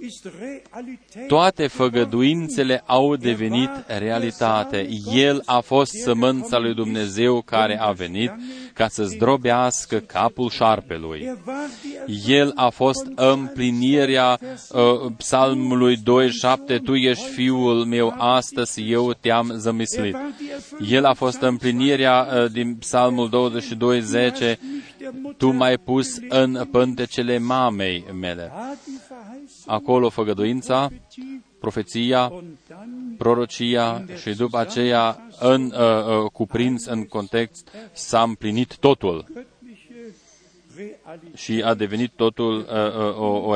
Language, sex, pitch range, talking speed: Romanian, male, 115-140 Hz, 100 wpm